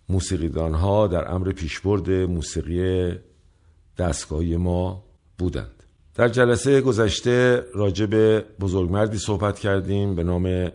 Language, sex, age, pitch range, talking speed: Persian, male, 50-69, 85-105 Hz, 100 wpm